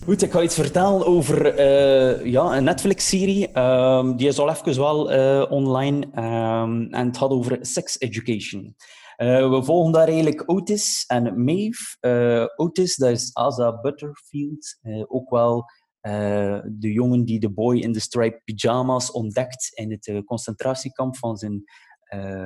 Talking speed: 150 wpm